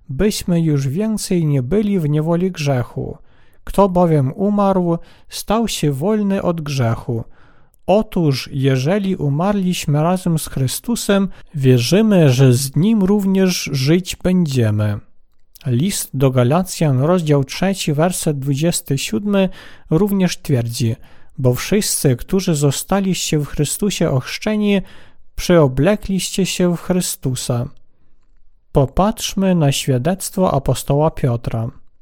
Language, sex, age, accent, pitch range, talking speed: Polish, male, 50-69, native, 135-190 Hz, 100 wpm